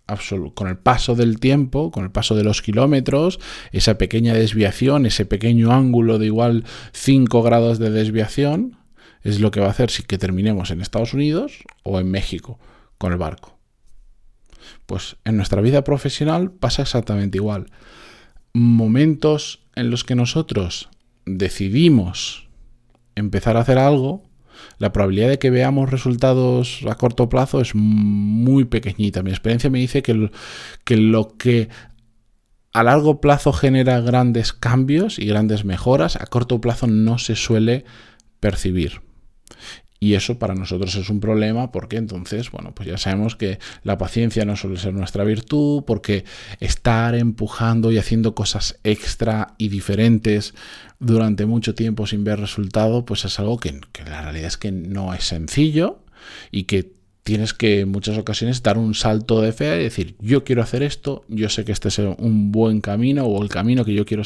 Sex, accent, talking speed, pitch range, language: male, Spanish, 165 wpm, 105-125 Hz, Spanish